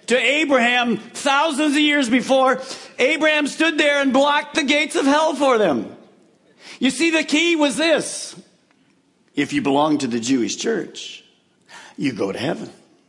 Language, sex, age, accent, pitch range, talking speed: English, male, 50-69, American, 200-285 Hz, 155 wpm